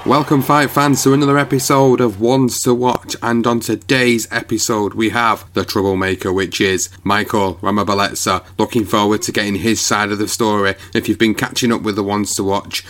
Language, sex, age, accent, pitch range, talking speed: English, male, 30-49, British, 100-120 Hz, 190 wpm